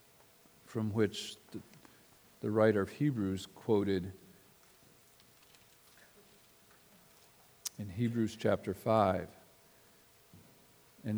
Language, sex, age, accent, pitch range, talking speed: English, male, 50-69, American, 100-120 Hz, 65 wpm